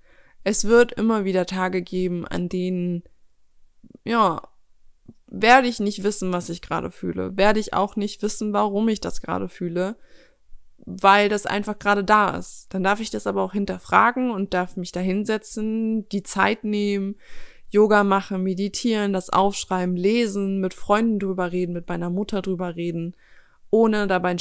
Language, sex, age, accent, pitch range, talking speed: German, female, 20-39, German, 180-210 Hz, 160 wpm